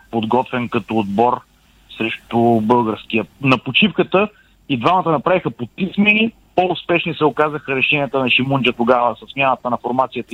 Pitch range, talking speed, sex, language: 120-150 Hz, 120 wpm, male, Bulgarian